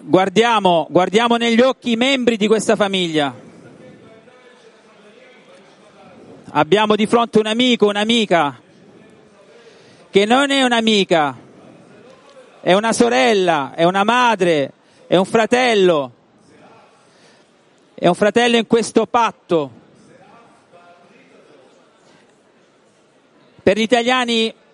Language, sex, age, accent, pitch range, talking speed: Turkish, male, 40-59, Italian, 200-245 Hz, 90 wpm